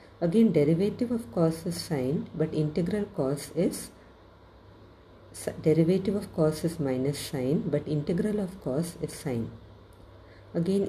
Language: English